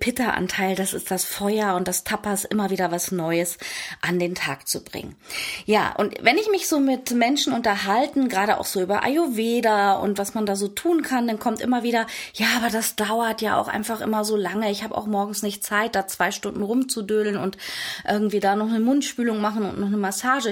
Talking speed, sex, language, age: 210 wpm, female, German, 20-39